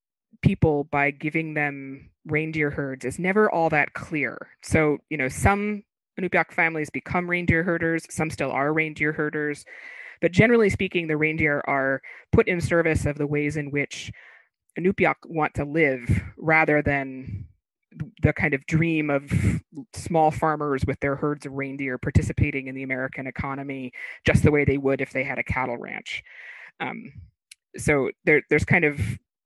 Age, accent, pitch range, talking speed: 20-39, American, 135-165 Hz, 160 wpm